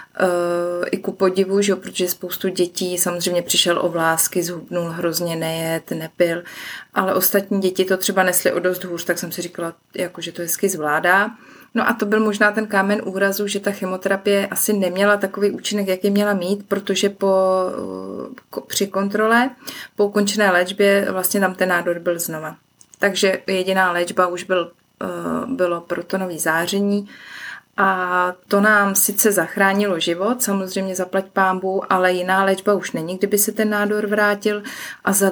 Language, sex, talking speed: Czech, female, 160 wpm